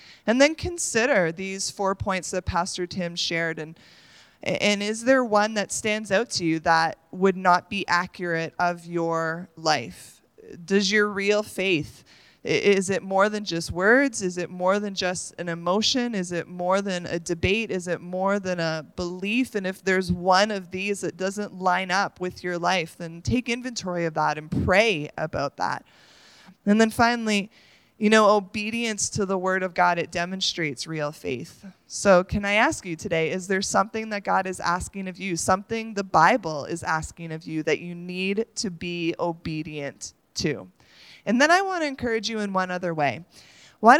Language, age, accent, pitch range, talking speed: English, 20-39, American, 170-205 Hz, 185 wpm